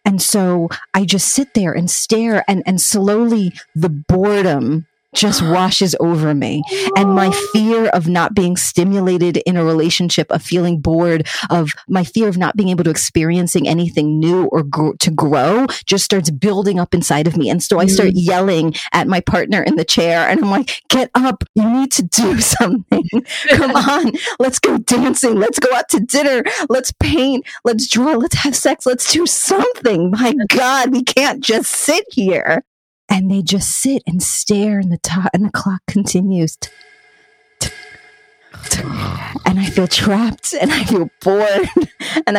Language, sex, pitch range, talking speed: English, female, 175-230 Hz, 170 wpm